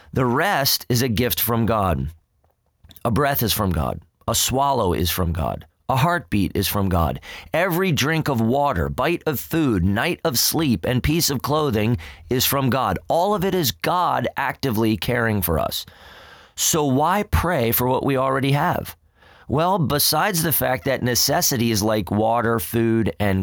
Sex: male